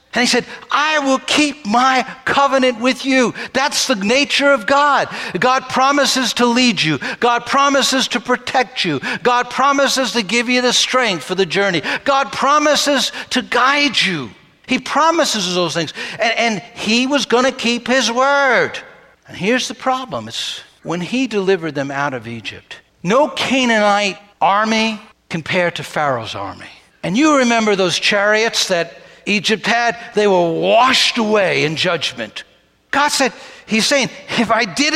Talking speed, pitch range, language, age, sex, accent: 160 wpm, 215-275 Hz, English, 60-79, male, American